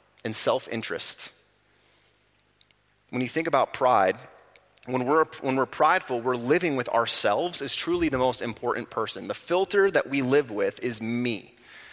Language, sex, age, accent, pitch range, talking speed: English, male, 30-49, American, 110-140 Hz, 150 wpm